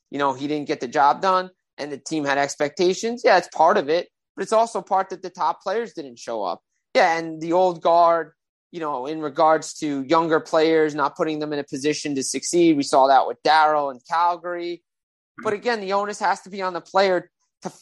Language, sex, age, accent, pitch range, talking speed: English, male, 30-49, American, 160-205 Hz, 225 wpm